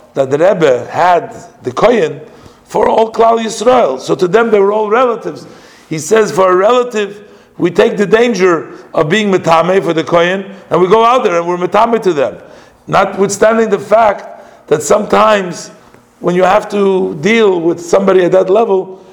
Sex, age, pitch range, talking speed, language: male, 50-69, 170-210 Hz, 180 wpm, English